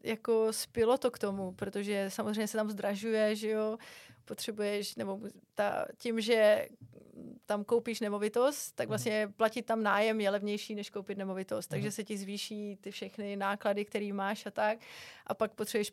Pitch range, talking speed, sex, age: 200-220 Hz, 165 wpm, female, 30-49